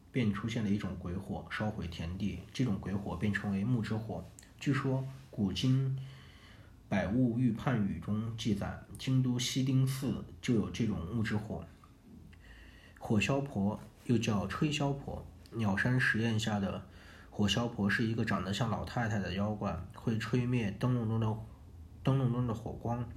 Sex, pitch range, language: male, 90-115 Hz, Chinese